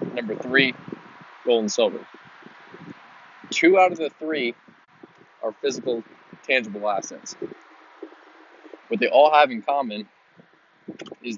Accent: American